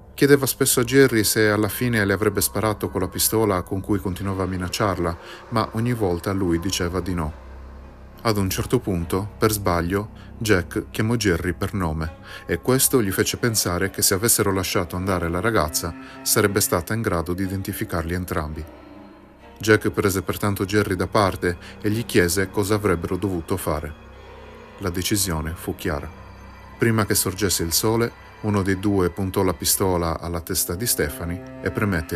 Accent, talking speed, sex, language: native, 165 wpm, male, Italian